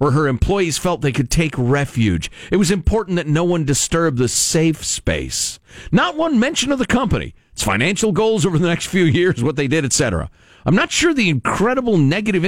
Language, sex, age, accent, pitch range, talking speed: English, male, 50-69, American, 125-185 Hz, 200 wpm